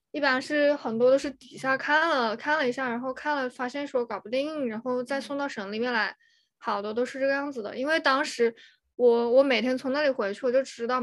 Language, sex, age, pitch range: Chinese, female, 20-39, 225-275 Hz